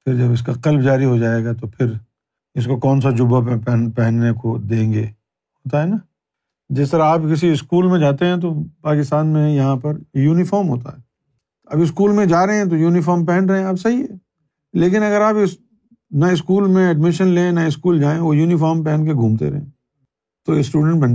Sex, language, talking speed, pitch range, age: male, Urdu, 215 wpm, 130-180 Hz, 50-69